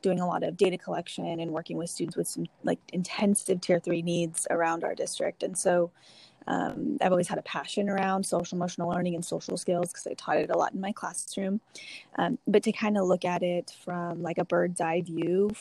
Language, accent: English, American